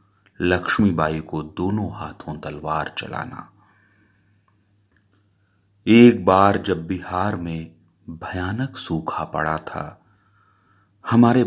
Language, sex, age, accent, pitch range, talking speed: Hindi, male, 30-49, native, 85-105 Hz, 85 wpm